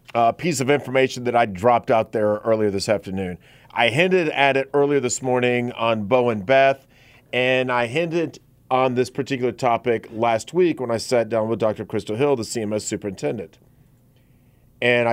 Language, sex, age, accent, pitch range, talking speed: English, male, 40-59, American, 115-135 Hz, 175 wpm